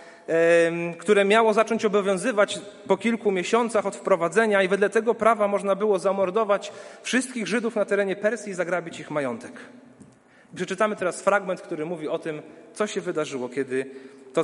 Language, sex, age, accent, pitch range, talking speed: Polish, male, 40-59, native, 170-215 Hz, 155 wpm